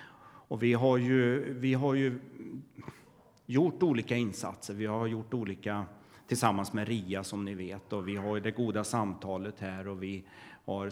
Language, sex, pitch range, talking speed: Swedish, male, 105-140 Hz, 155 wpm